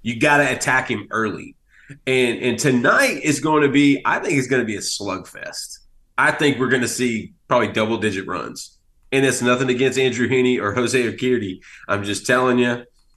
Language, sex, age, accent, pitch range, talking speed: English, male, 30-49, American, 125-165 Hz, 195 wpm